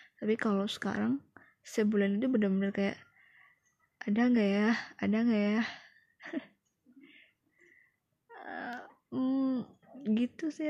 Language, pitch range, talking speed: Indonesian, 215-260 Hz, 95 wpm